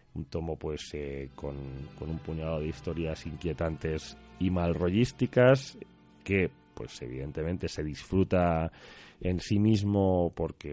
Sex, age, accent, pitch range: male, 30-49, Spanish, 80-100 Hz